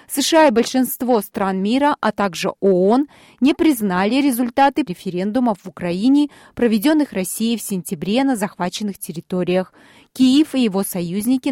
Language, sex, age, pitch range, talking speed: Russian, female, 30-49, 185-265 Hz, 130 wpm